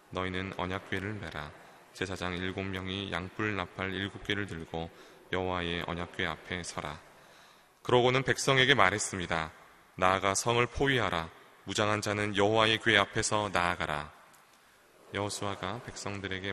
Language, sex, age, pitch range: Korean, male, 20-39, 85-105 Hz